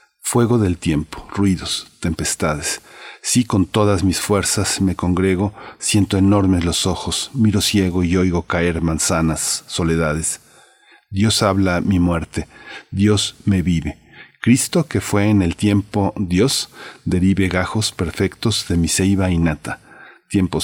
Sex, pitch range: male, 85-105 Hz